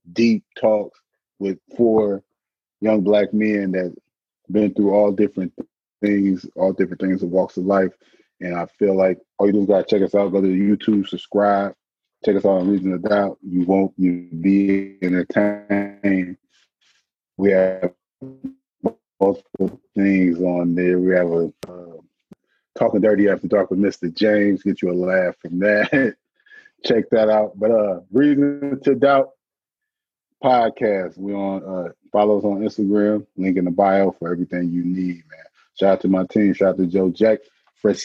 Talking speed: 170 wpm